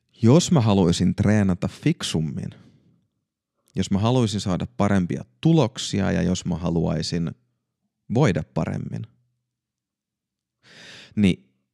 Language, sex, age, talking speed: Finnish, male, 30-49, 90 wpm